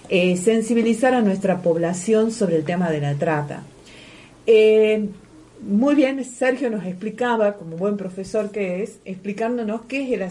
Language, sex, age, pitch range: Spanish, female, 50-69, 185-235 Hz